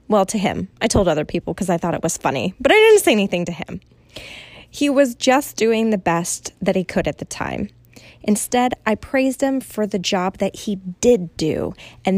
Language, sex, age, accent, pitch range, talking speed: English, female, 20-39, American, 180-240 Hz, 215 wpm